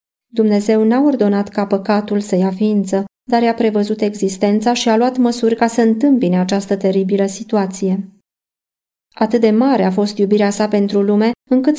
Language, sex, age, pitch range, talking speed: Romanian, female, 30-49, 190-225 Hz, 165 wpm